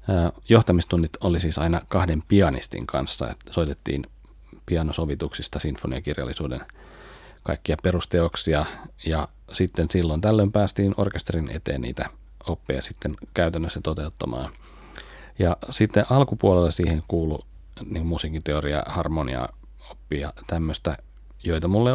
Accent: native